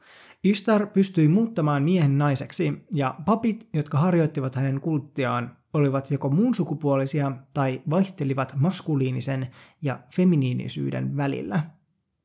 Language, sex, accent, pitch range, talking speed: Finnish, male, native, 135-180 Hz, 100 wpm